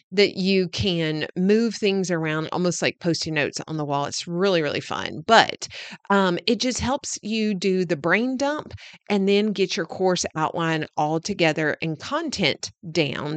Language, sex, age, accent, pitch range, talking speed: English, female, 40-59, American, 160-200 Hz, 170 wpm